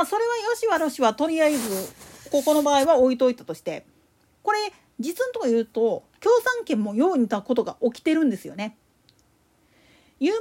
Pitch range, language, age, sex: 235-365 Hz, Japanese, 40-59, female